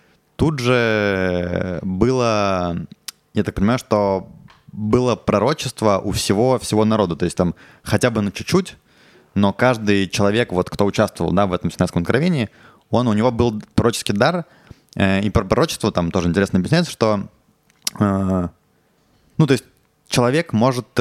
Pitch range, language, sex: 95-120 Hz, Russian, male